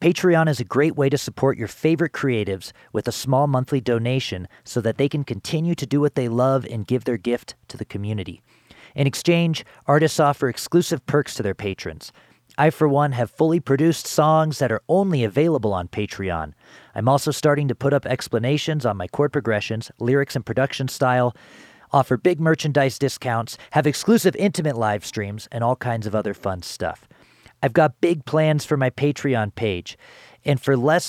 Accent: American